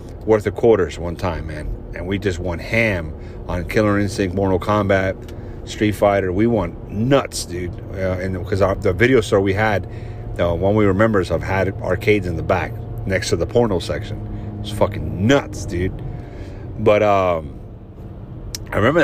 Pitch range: 95-120 Hz